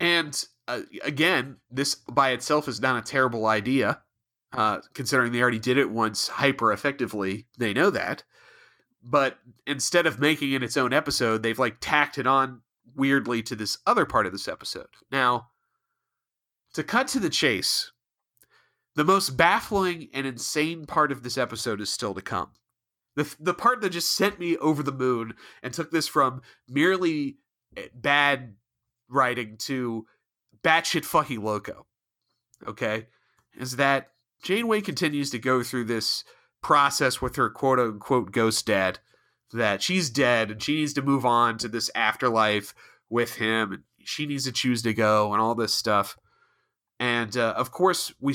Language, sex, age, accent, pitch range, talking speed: English, male, 30-49, American, 115-145 Hz, 160 wpm